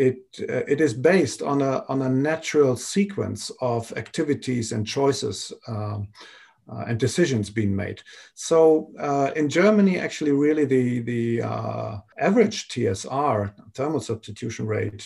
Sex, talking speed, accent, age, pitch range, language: male, 135 wpm, German, 50-69, 110-140 Hz, English